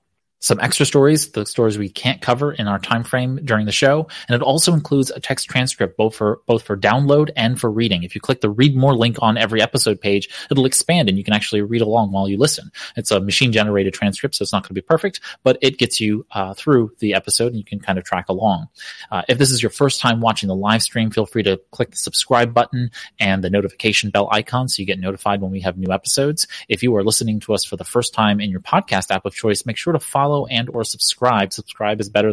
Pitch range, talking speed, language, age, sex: 100-125 Hz, 255 wpm, English, 30-49, male